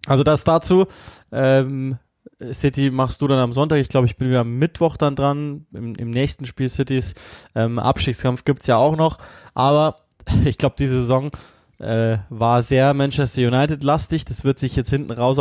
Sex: male